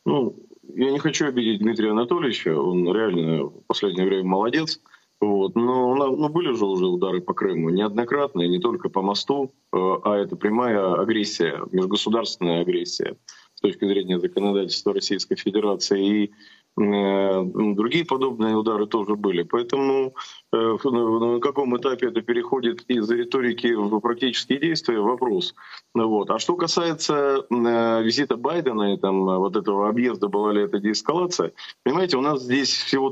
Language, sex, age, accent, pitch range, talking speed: Russian, male, 20-39, native, 105-130 Hz, 140 wpm